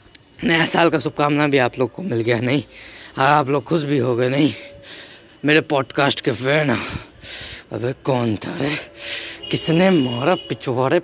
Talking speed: 160 wpm